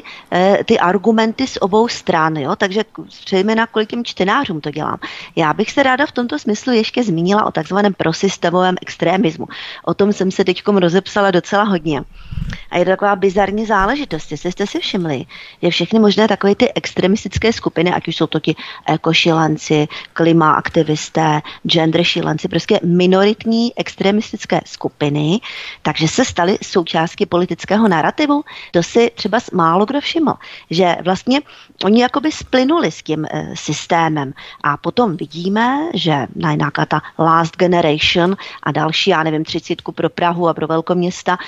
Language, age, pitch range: Czech, 30-49, 165-205 Hz